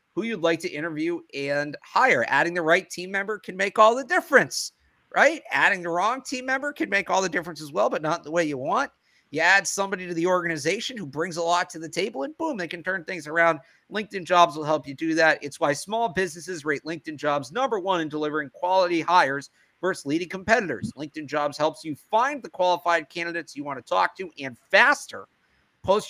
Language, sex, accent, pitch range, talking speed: English, male, American, 155-215 Hz, 220 wpm